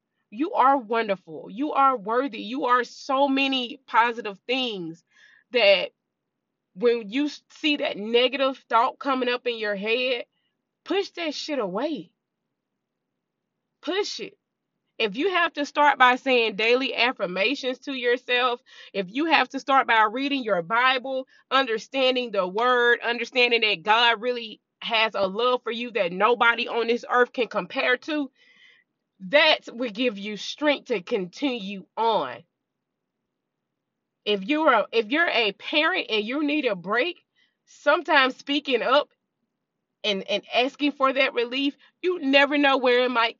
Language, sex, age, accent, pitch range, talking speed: English, female, 20-39, American, 230-285 Hz, 145 wpm